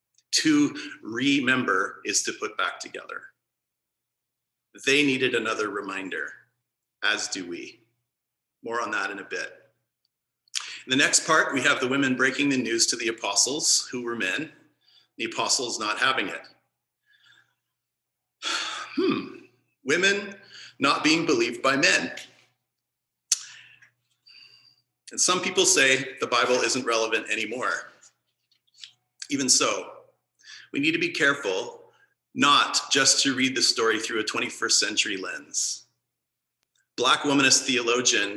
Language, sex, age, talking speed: English, male, 40-59, 125 wpm